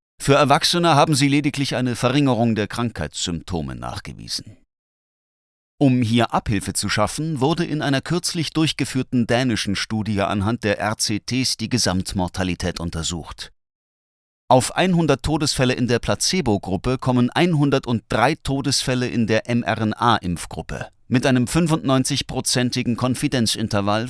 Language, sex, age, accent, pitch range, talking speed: German, male, 30-49, German, 105-140 Hz, 110 wpm